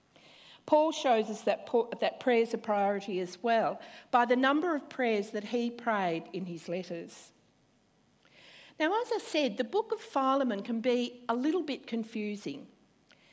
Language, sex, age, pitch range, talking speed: English, female, 50-69, 210-280 Hz, 160 wpm